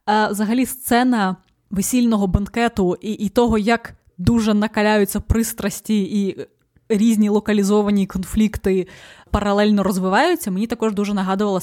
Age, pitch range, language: 20-39, 190-235 Hz, Ukrainian